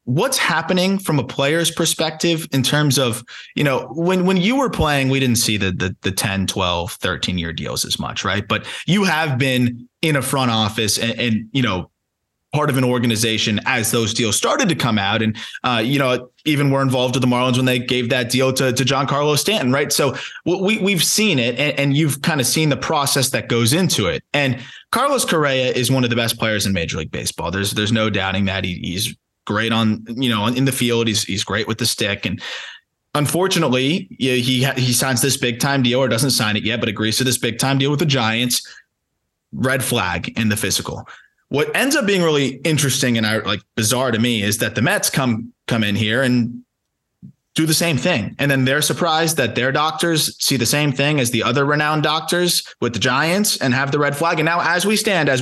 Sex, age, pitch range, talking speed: male, 20-39, 115-155 Hz, 225 wpm